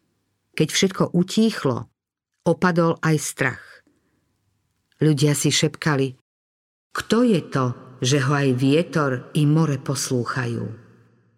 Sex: female